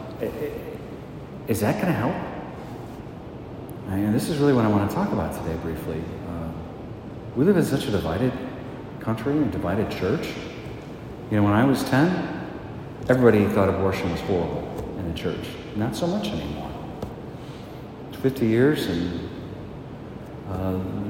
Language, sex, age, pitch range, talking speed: English, male, 40-59, 95-130 Hz, 150 wpm